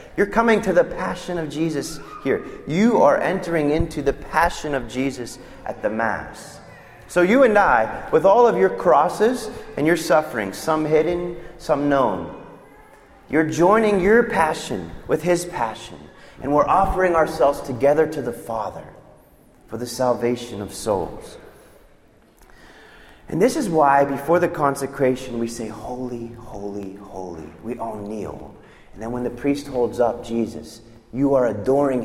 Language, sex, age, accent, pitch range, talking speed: English, male, 30-49, American, 110-165 Hz, 150 wpm